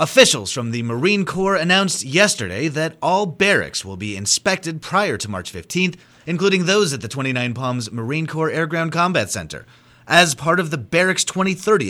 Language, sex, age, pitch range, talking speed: English, male, 30-49, 120-180 Hz, 175 wpm